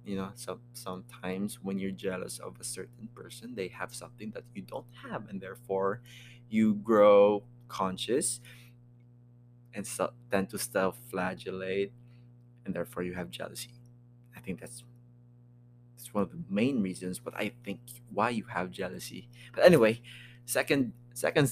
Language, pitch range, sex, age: English, 105-120 Hz, male, 20-39